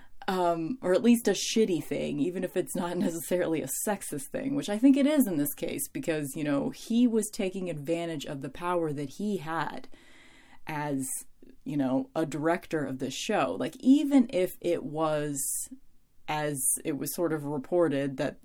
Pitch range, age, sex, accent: 145-195 Hz, 30-49, female, American